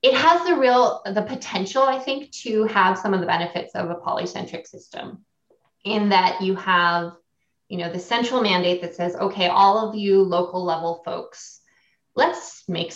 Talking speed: 175 wpm